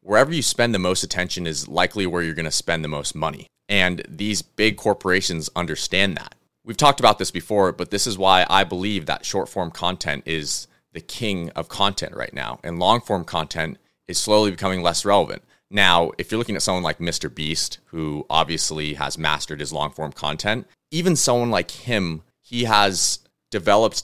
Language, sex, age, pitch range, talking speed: English, male, 30-49, 80-100 Hz, 185 wpm